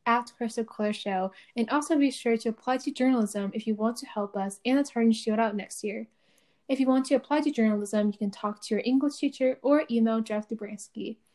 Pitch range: 205-240 Hz